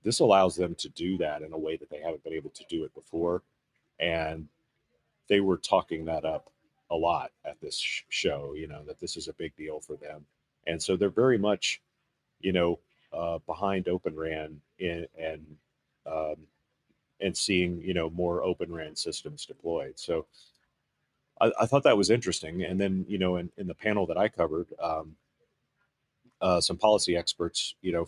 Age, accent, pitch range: 40-59, American, 80-90 Hz